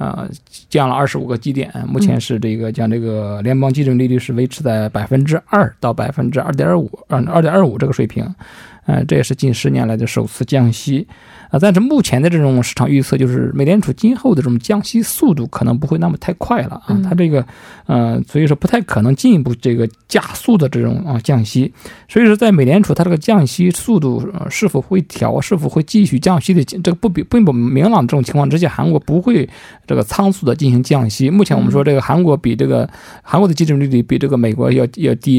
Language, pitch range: Korean, 125-175 Hz